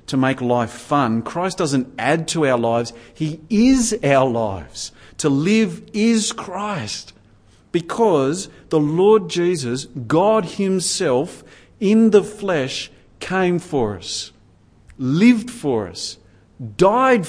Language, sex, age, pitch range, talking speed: English, male, 50-69, 140-205 Hz, 120 wpm